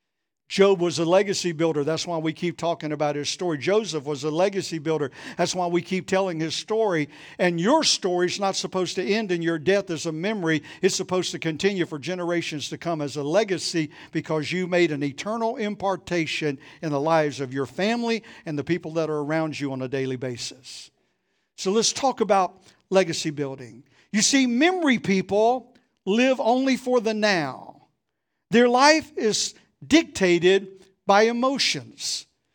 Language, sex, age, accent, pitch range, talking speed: English, male, 50-69, American, 170-250 Hz, 175 wpm